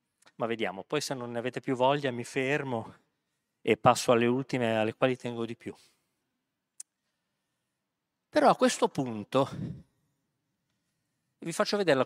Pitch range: 115-140 Hz